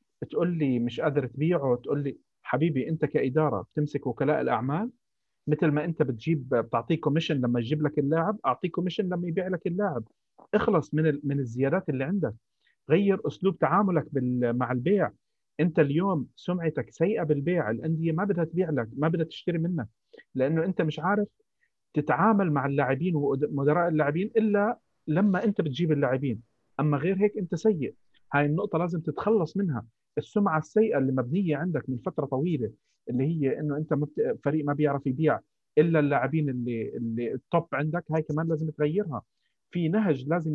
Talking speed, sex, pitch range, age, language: 160 wpm, male, 140-175 Hz, 40-59, Arabic